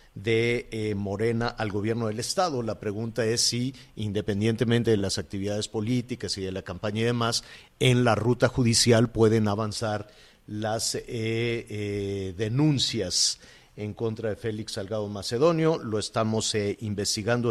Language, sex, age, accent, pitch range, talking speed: Spanish, male, 50-69, Mexican, 110-140 Hz, 145 wpm